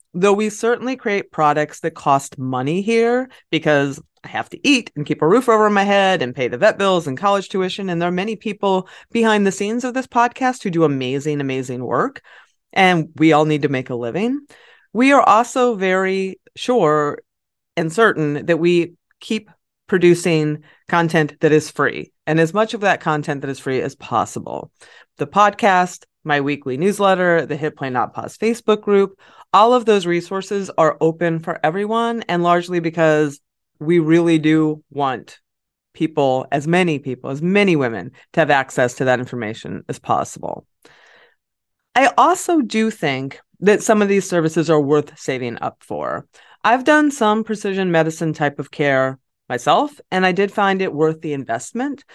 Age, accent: 30-49, American